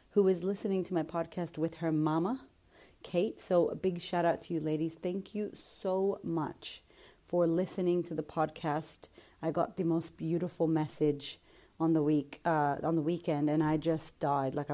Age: 30-49